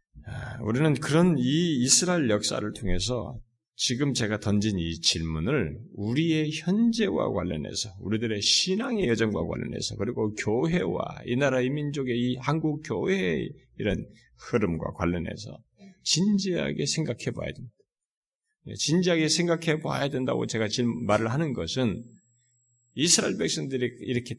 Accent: native